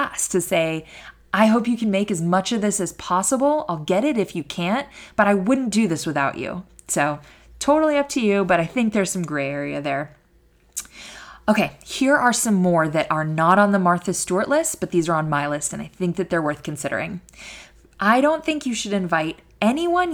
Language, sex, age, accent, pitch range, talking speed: English, female, 20-39, American, 160-225 Hz, 215 wpm